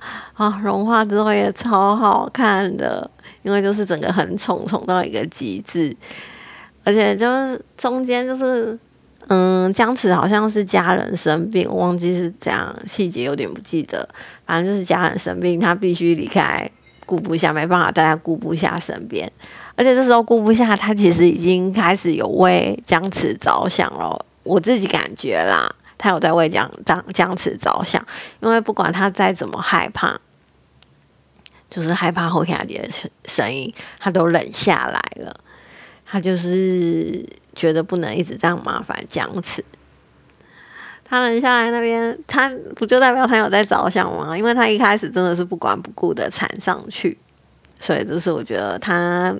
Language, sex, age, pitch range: Chinese, female, 20-39, 175-225 Hz